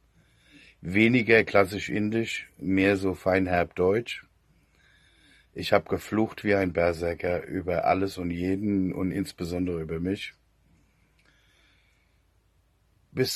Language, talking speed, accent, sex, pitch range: German, 100 wpm, German, male, 95-110 Hz